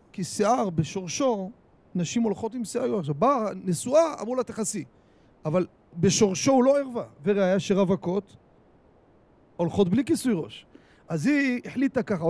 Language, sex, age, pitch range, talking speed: Hebrew, male, 40-59, 165-225 Hz, 140 wpm